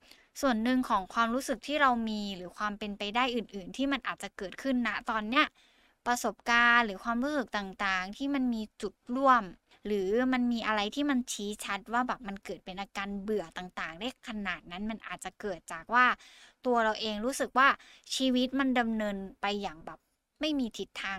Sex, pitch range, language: female, 200-255 Hz, Thai